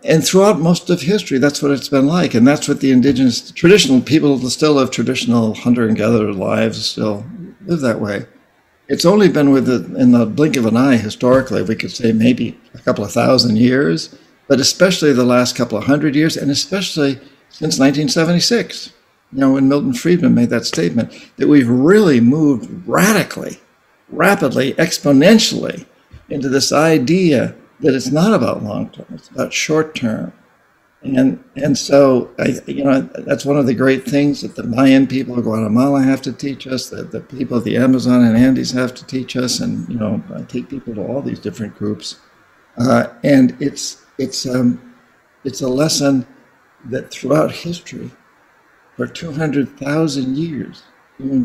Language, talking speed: English, 170 wpm